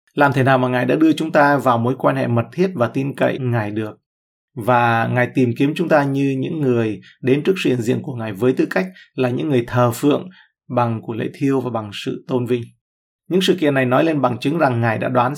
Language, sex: Vietnamese, male